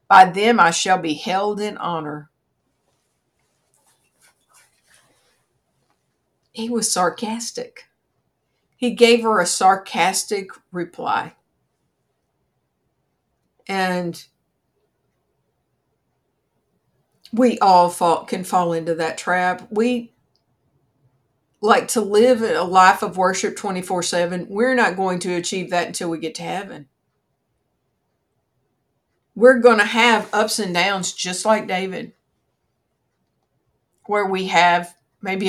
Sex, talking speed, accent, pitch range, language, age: female, 100 wpm, American, 165-205 Hz, English, 50-69